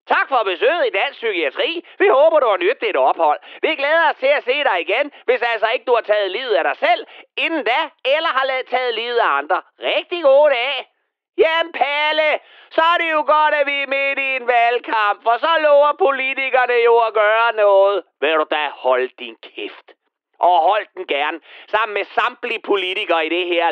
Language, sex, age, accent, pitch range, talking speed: Danish, male, 30-49, native, 215-335 Hz, 205 wpm